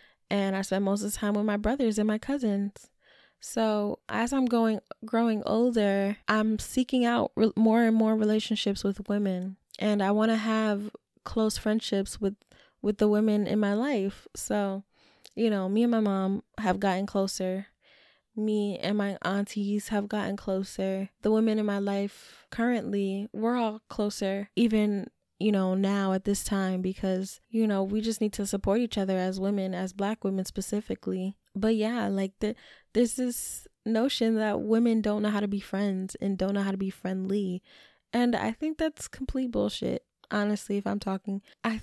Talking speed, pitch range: 180 wpm, 200-225 Hz